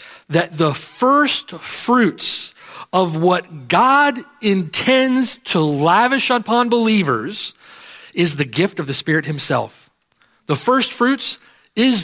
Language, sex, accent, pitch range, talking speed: English, male, American, 155-235 Hz, 115 wpm